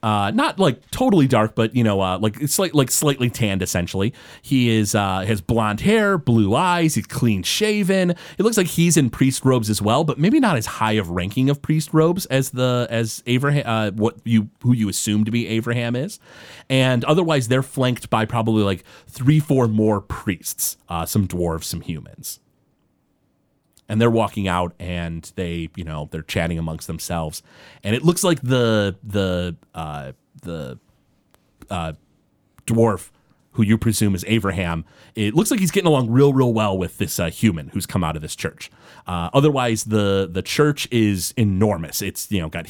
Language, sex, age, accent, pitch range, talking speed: English, male, 30-49, American, 95-130 Hz, 185 wpm